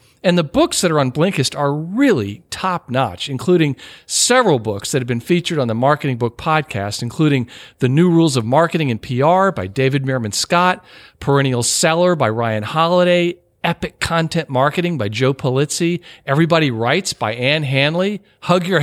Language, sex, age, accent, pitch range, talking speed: English, male, 50-69, American, 125-175 Hz, 165 wpm